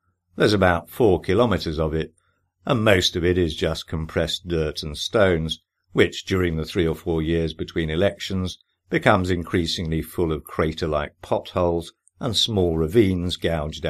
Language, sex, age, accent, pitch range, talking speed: English, male, 50-69, British, 80-95 Hz, 150 wpm